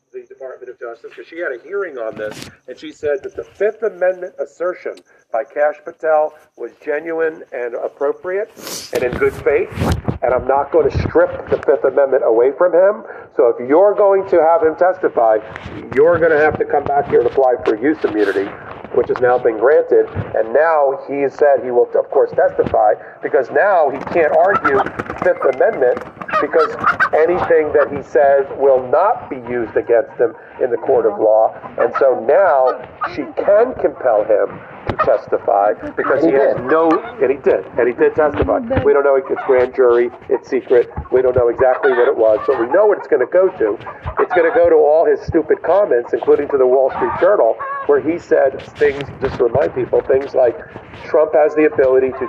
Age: 50-69